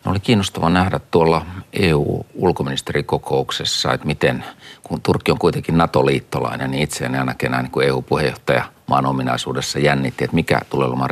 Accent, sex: native, male